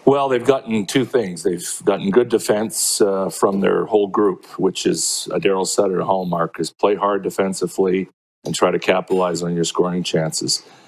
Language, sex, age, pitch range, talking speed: English, male, 40-59, 90-105 Hz, 175 wpm